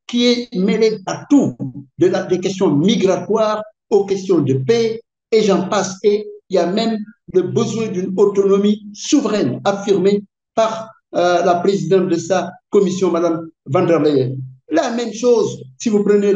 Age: 60-79